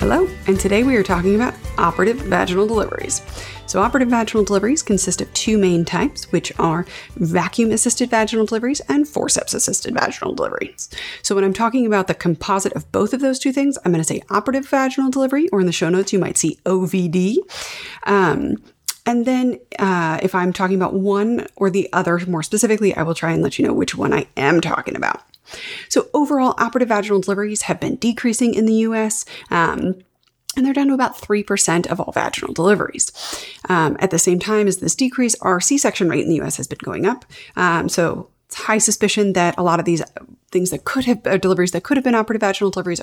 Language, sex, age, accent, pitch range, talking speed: English, female, 30-49, American, 180-245 Hz, 210 wpm